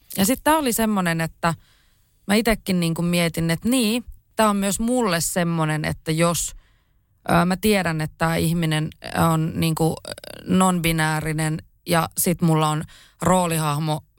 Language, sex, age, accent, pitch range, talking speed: Finnish, female, 20-39, native, 155-185 Hz, 140 wpm